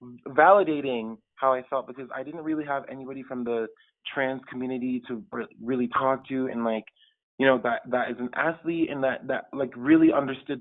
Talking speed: 185 wpm